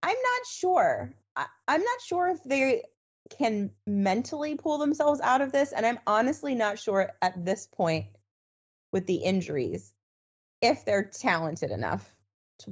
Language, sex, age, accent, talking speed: English, female, 20-39, American, 150 wpm